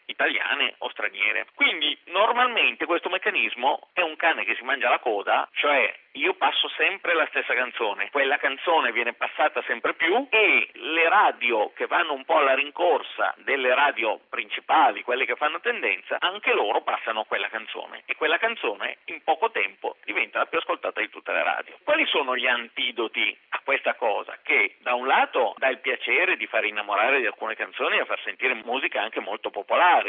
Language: Italian